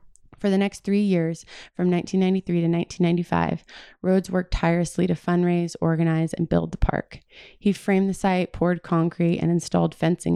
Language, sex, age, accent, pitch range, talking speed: English, female, 20-39, American, 165-185 Hz, 160 wpm